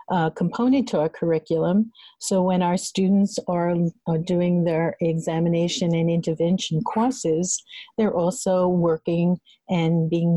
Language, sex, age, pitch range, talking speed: English, female, 50-69, 165-190 Hz, 125 wpm